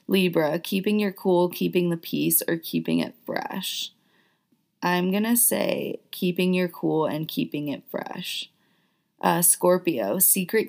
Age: 20-39